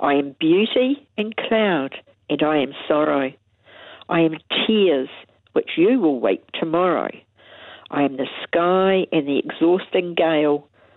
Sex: female